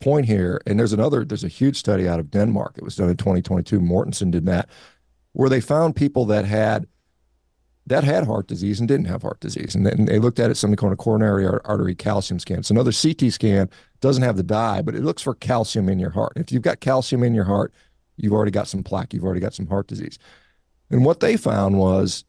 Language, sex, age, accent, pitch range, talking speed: English, male, 50-69, American, 95-120 Hz, 235 wpm